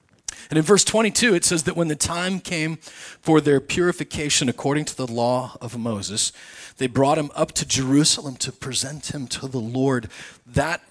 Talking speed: 180 wpm